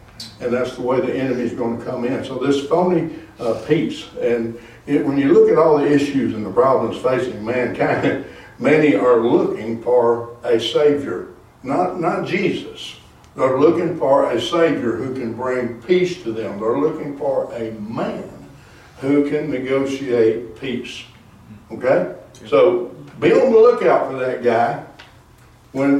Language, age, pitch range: English, 60-79, 120-170 Hz